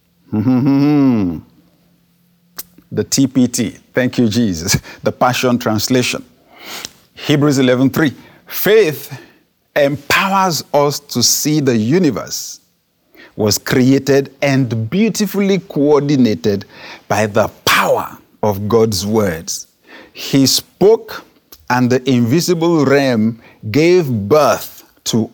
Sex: male